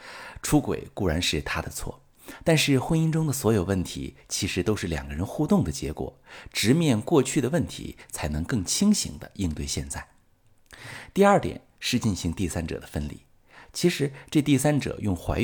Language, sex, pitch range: Chinese, male, 90-125 Hz